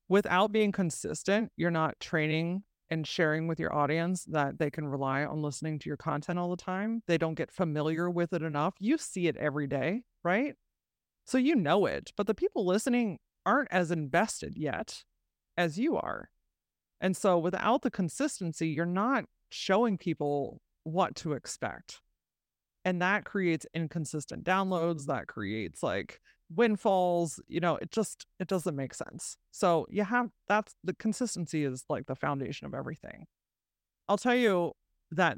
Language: English